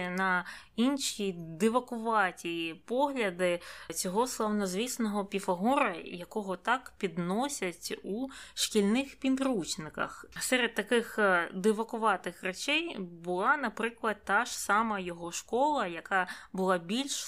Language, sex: Ukrainian, female